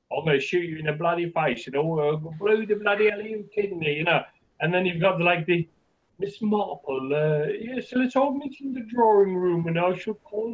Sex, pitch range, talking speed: male, 125-170 Hz, 245 wpm